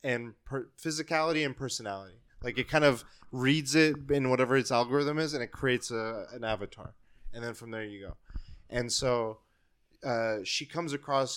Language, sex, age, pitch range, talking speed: English, male, 20-39, 110-140 Hz, 175 wpm